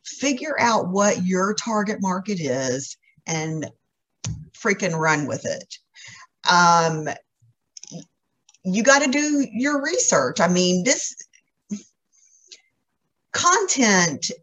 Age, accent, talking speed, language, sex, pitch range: 50-69, American, 95 wpm, English, female, 170-240 Hz